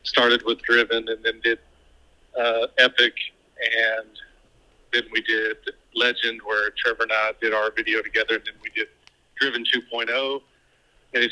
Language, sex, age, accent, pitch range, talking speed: English, male, 40-59, American, 110-120 Hz, 155 wpm